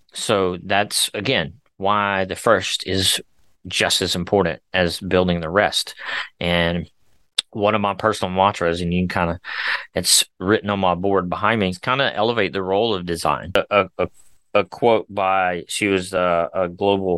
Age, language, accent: 30-49, English, American